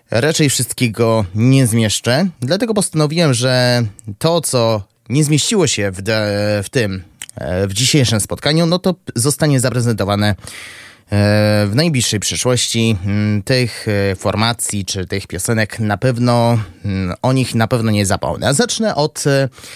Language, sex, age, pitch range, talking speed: Polish, male, 20-39, 105-150 Hz, 120 wpm